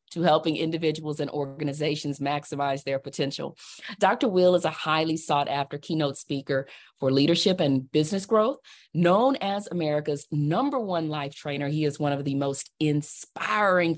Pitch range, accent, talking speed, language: 145-180 Hz, American, 150 wpm, English